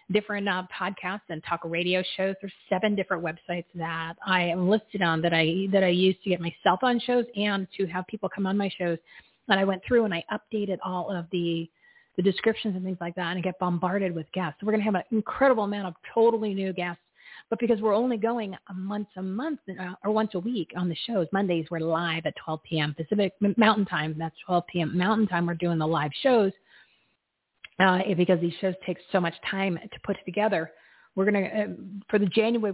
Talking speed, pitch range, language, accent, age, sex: 220 wpm, 175-210 Hz, English, American, 40-59, female